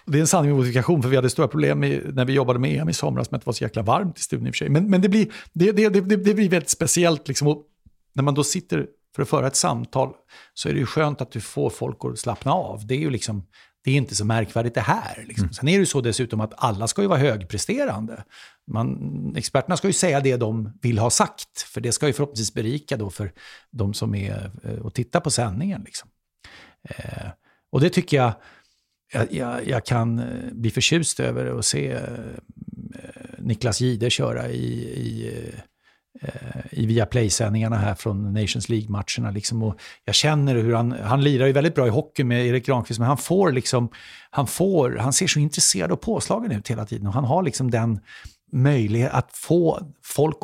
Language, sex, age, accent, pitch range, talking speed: English, male, 50-69, Swedish, 110-145 Hz, 205 wpm